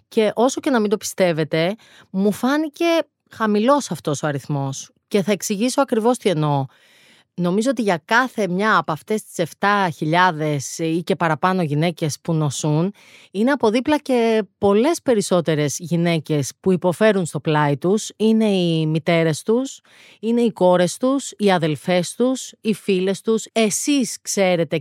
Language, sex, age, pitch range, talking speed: Greek, female, 30-49, 160-220 Hz, 150 wpm